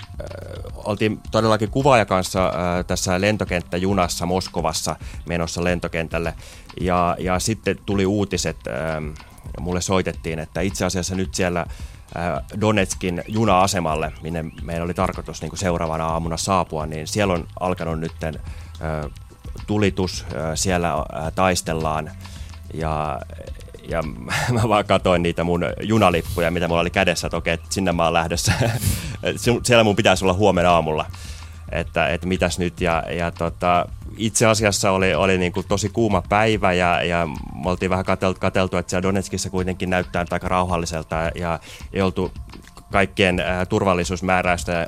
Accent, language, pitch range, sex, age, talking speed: native, Finnish, 80-95 Hz, male, 30-49, 140 wpm